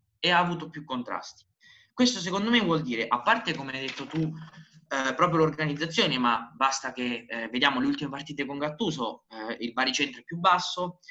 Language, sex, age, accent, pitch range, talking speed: Italian, male, 20-39, native, 125-165 Hz, 190 wpm